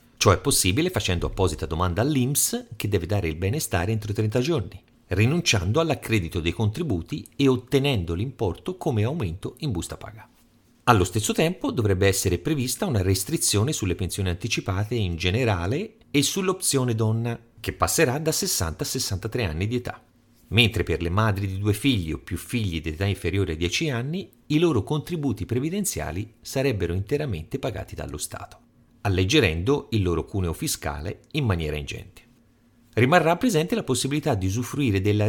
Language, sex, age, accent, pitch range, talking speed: Italian, male, 40-59, native, 95-135 Hz, 155 wpm